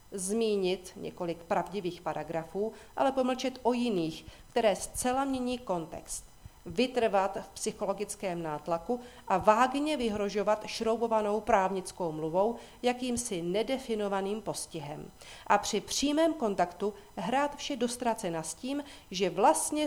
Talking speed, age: 110 wpm, 40-59